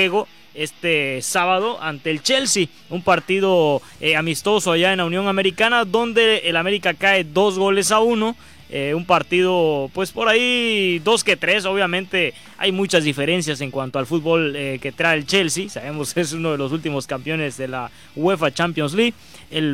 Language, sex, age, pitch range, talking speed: Spanish, male, 20-39, 160-205 Hz, 175 wpm